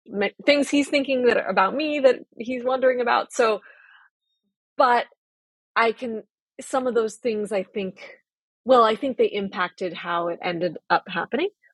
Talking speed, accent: 155 wpm, American